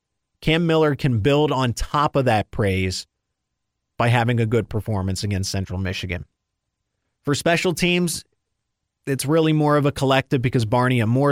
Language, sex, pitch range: English, male, 105-145 Hz